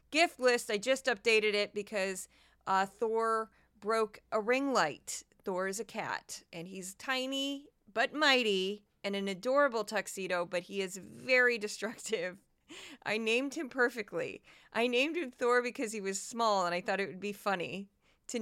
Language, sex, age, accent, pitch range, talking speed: English, female, 30-49, American, 190-240 Hz, 165 wpm